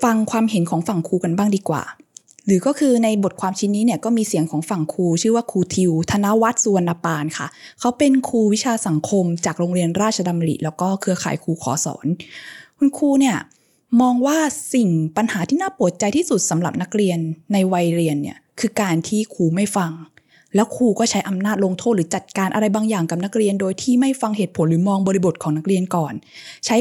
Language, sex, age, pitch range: Thai, female, 20-39, 185-245 Hz